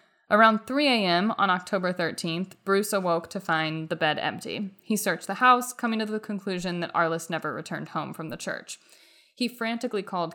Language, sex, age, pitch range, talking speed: English, female, 20-39, 170-215 Hz, 185 wpm